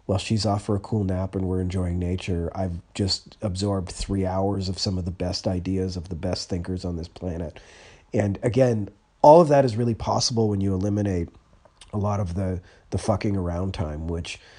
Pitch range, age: 95-110 Hz, 30-49